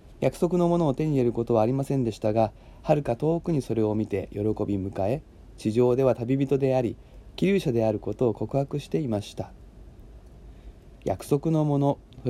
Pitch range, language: 110-145 Hz, Japanese